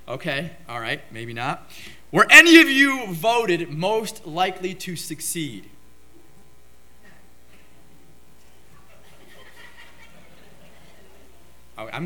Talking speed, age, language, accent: 75 wpm, 30-49, English, American